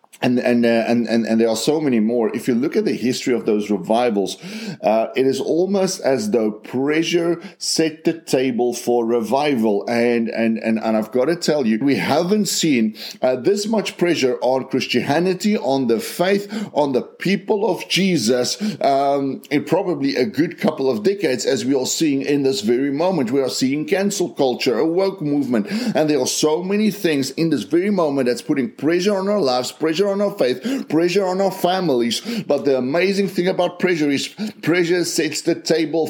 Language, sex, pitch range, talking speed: English, male, 135-180 Hz, 195 wpm